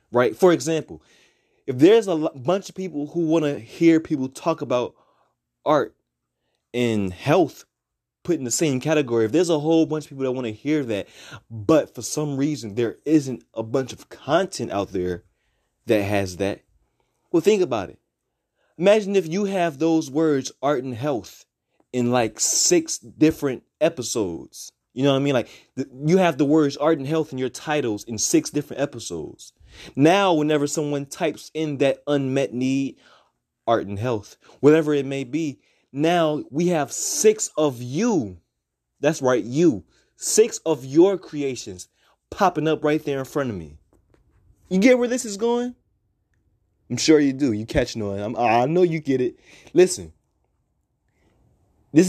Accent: American